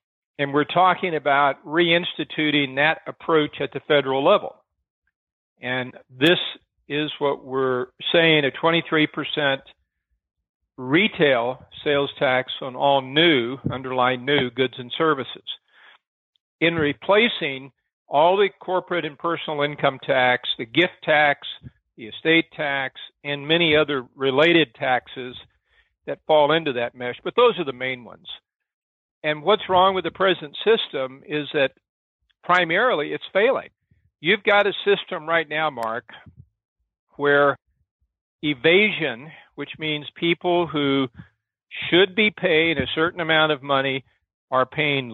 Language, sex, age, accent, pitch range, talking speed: English, male, 50-69, American, 130-160 Hz, 130 wpm